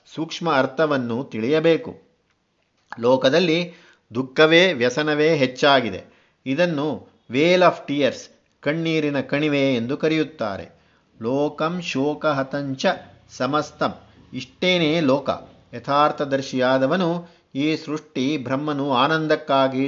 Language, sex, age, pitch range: Kannada, male, 50-69, 130-160 Hz